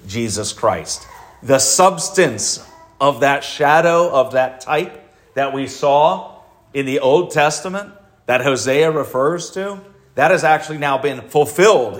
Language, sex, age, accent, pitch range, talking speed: English, male, 40-59, American, 115-155 Hz, 135 wpm